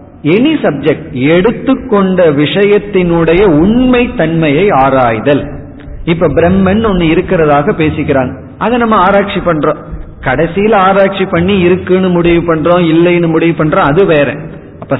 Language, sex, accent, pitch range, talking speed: Tamil, male, native, 140-185 Hz, 75 wpm